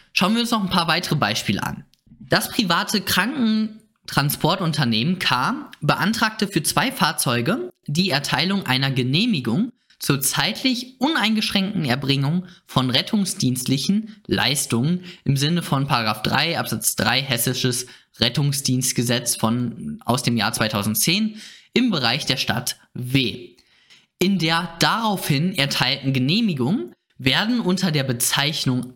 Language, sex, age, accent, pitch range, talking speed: German, male, 20-39, German, 130-205 Hz, 115 wpm